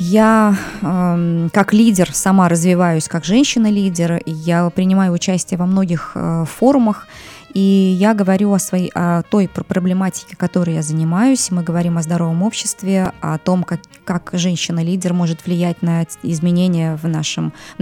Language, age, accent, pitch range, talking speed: Russian, 20-39, native, 170-205 Hz, 140 wpm